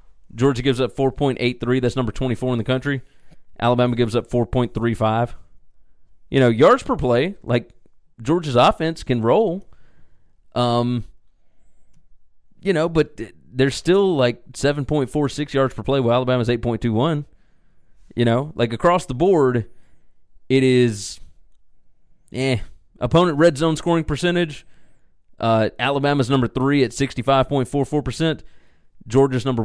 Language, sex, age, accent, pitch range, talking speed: English, male, 30-49, American, 120-155 Hz, 120 wpm